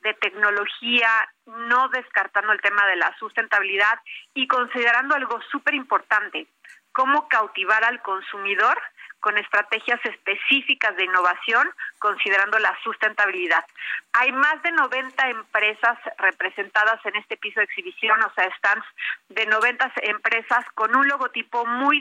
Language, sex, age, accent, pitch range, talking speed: Spanish, female, 40-59, Mexican, 210-245 Hz, 130 wpm